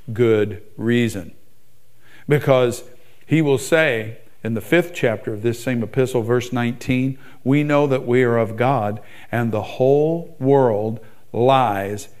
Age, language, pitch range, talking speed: 50-69, English, 110-130 Hz, 140 wpm